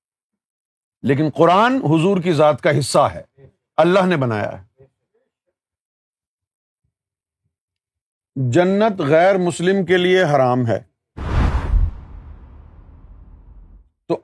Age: 50-69